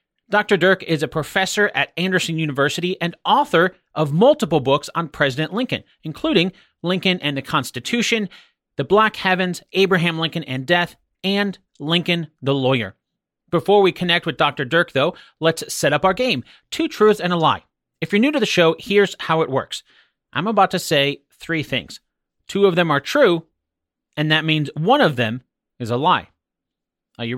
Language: English